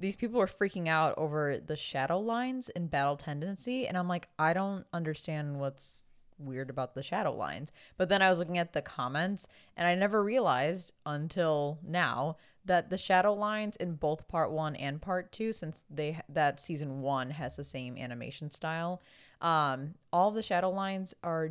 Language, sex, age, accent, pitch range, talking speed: English, female, 20-39, American, 145-190 Hz, 180 wpm